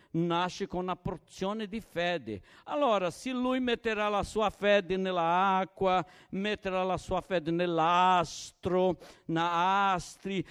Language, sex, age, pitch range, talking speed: Italian, male, 60-79, 170-220 Hz, 120 wpm